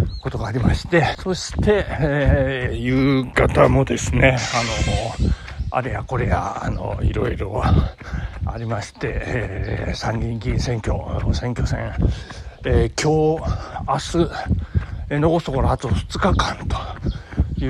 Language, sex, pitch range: Japanese, male, 95-145 Hz